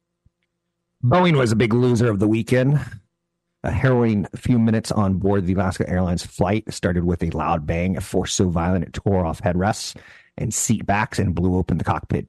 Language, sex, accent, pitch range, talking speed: English, male, American, 90-115 Hz, 190 wpm